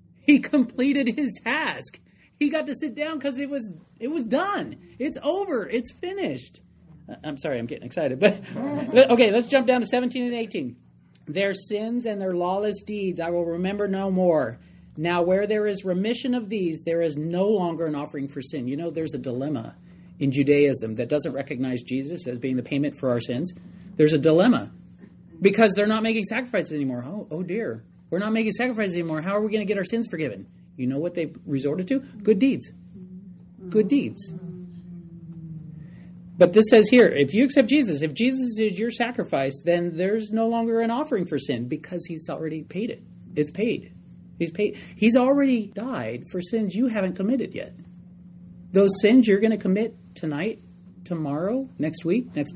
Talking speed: 185 wpm